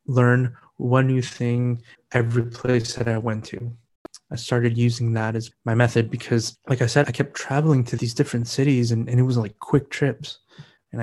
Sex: male